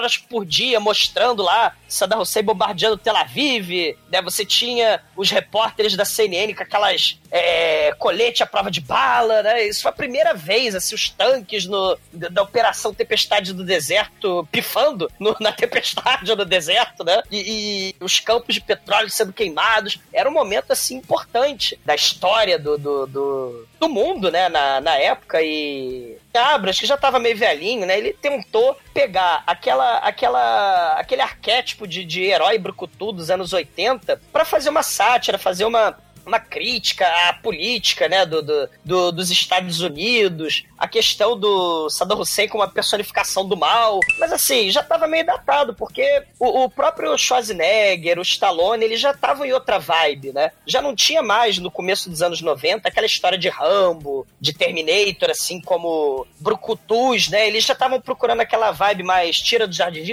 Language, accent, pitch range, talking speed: Portuguese, Brazilian, 185-260 Hz, 170 wpm